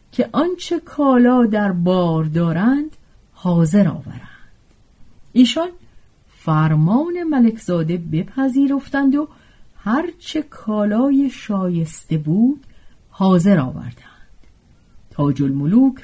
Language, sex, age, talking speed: Persian, female, 50-69, 80 wpm